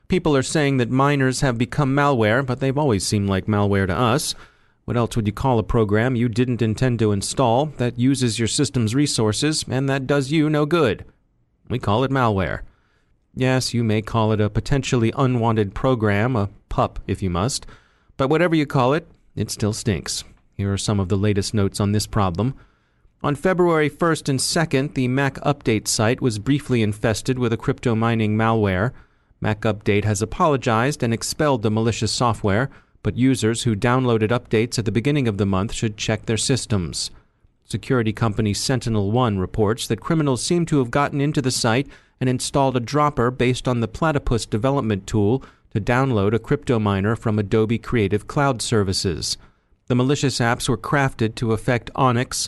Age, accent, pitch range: 30-49, American, 110-135 Hz